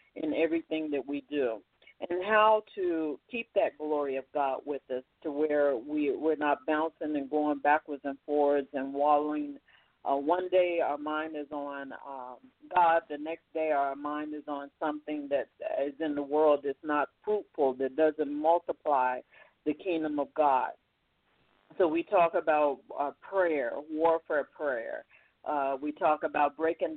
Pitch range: 145-185 Hz